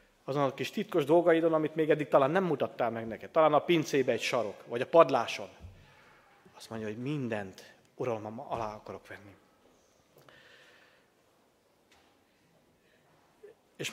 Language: Hungarian